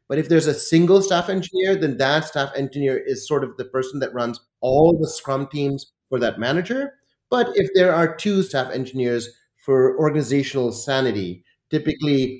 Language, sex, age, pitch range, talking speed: English, male, 30-49, 125-165 Hz, 175 wpm